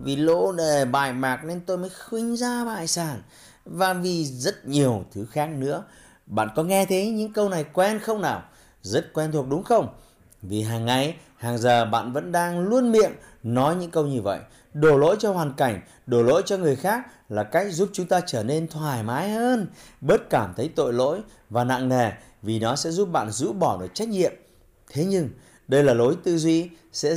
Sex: male